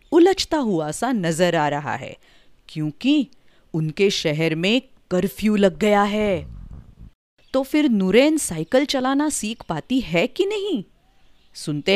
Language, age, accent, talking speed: Hindi, 40-59, native, 130 wpm